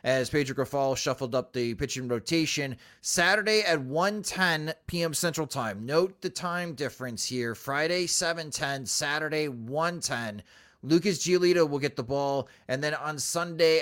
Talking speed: 145 wpm